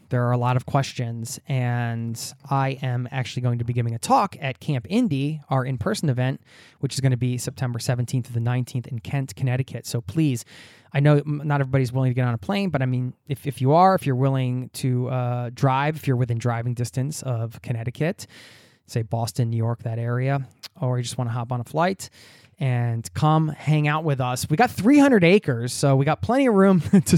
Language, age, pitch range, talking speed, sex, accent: English, 20-39, 120-145 Hz, 220 wpm, male, American